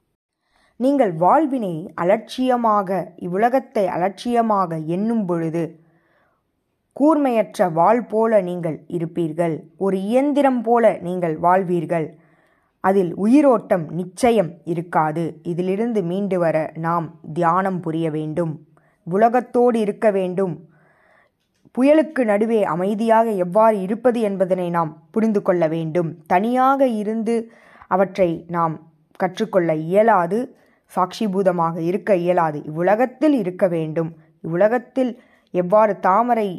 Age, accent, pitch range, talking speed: 20-39, native, 165-220 Hz, 90 wpm